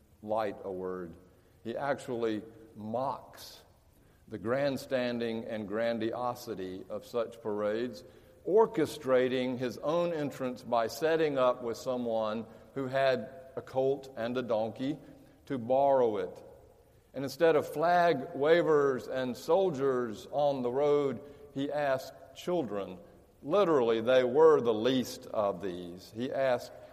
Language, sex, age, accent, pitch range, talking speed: English, male, 50-69, American, 105-135 Hz, 120 wpm